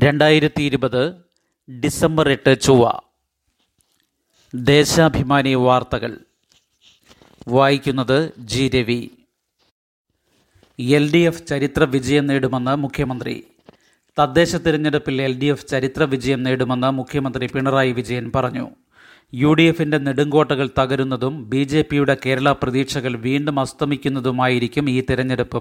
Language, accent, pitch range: Malayalam, native, 130-145 Hz